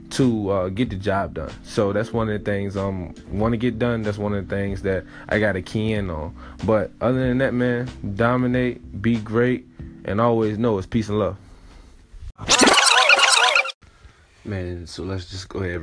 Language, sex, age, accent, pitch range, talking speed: English, male, 20-39, American, 80-95 Hz, 190 wpm